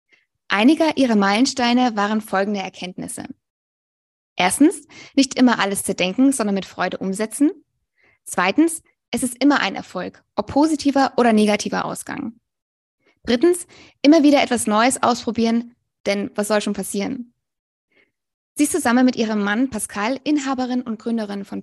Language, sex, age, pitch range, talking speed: German, female, 20-39, 210-265 Hz, 135 wpm